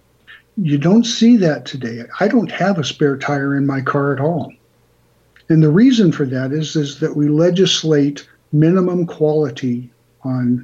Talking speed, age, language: 165 wpm, 60-79, English